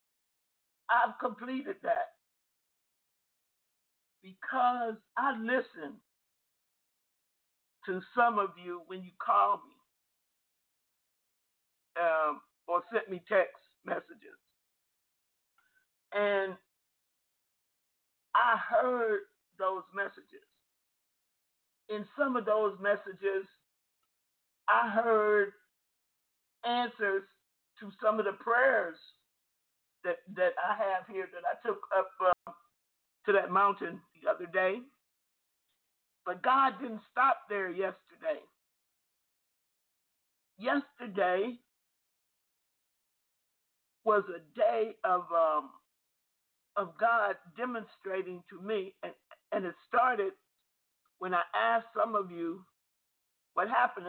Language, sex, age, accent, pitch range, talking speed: English, male, 50-69, American, 190-250 Hz, 90 wpm